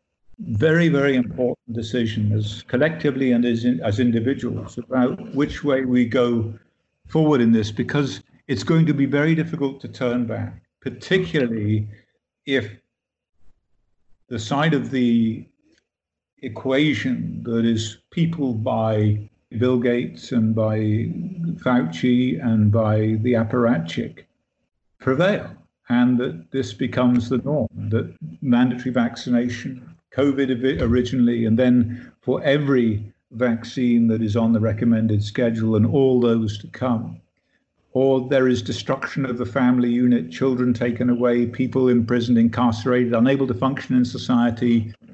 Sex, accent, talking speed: male, British, 125 wpm